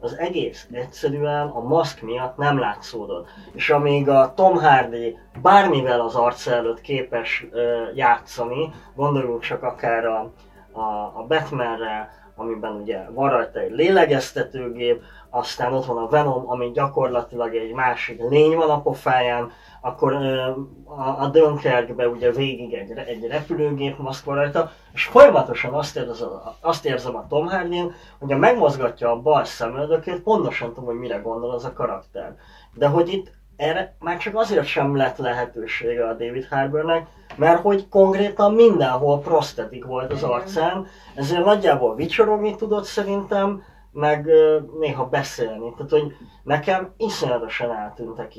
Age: 20-39